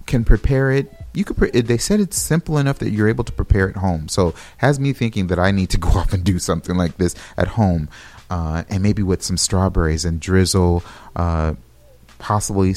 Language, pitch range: English, 80-105 Hz